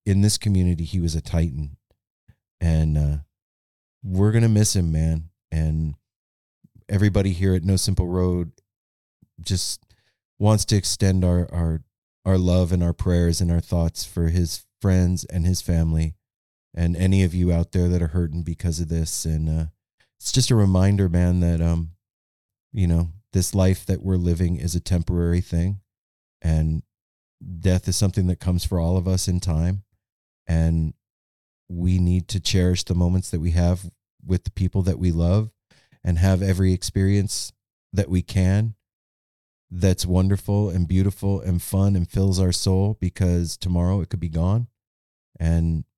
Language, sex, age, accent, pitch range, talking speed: English, male, 30-49, American, 85-95 Hz, 165 wpm